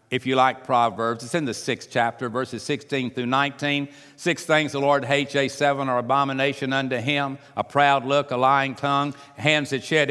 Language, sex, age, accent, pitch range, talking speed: English, male, 60-79, American, 115-155 Hz, 195 wpm